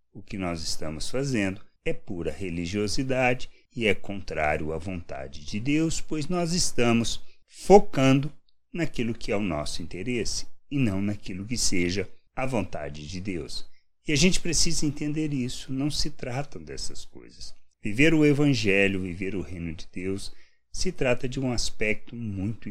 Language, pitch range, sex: Portuguese, 90-135 Hz, male